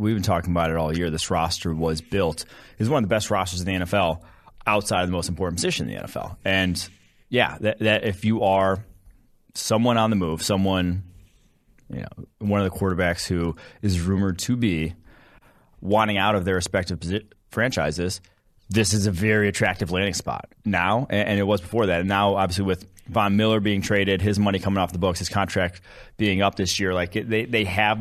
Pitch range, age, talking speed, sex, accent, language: 95-110 Hz, 30-49, 205 wpm, male, American, English